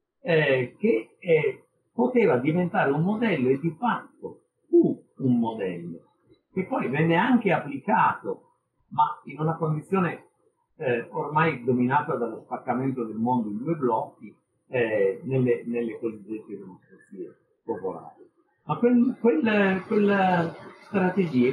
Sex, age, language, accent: male, 50-69, Italian, native